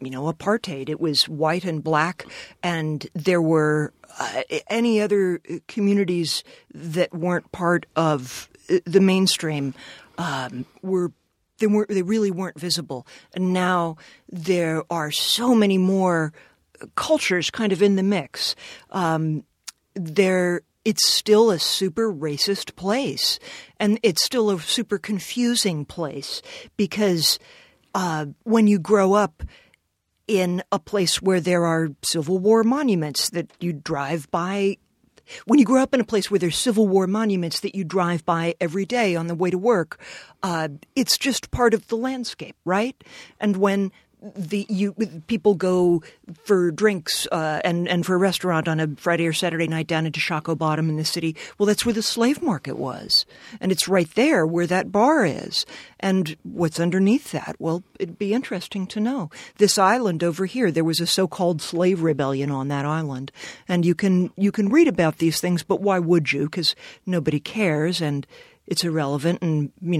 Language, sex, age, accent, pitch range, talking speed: English, female, 40-59, American, 165-205 Hz, 165 wpm